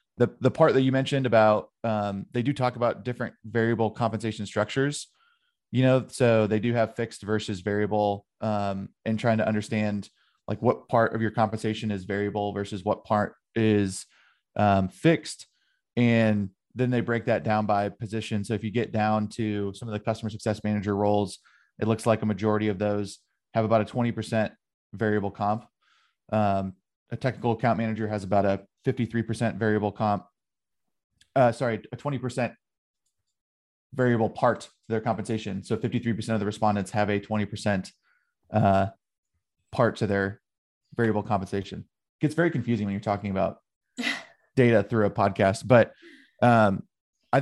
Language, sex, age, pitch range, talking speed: English, male, 20-39, 105-120 Hz, 160 wpm